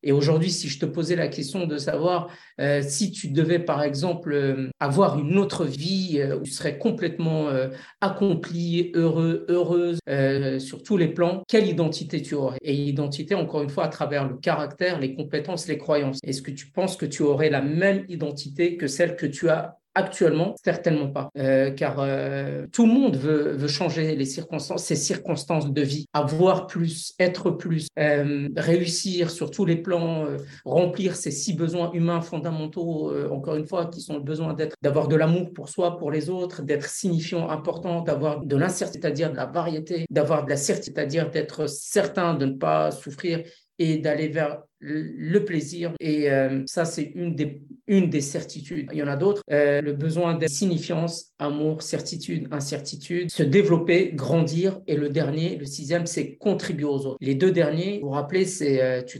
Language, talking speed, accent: French, 190 wpm, French